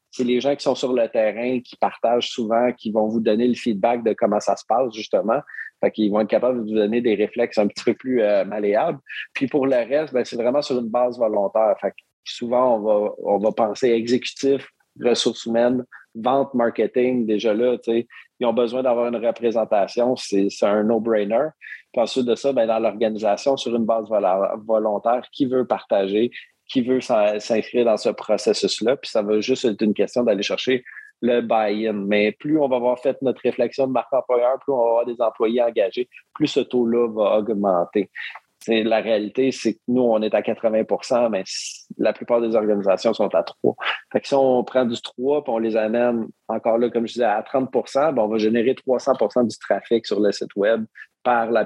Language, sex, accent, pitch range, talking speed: French, male, Canadian, 110-125 Hz, 205 wpm